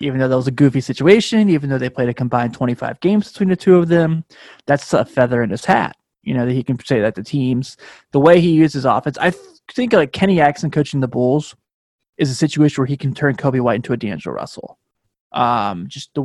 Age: 20-39